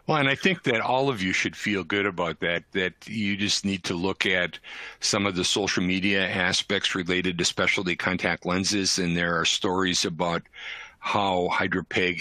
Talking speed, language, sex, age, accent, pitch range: 185 wpm, English, male, 50-69, American, 85-95 Hz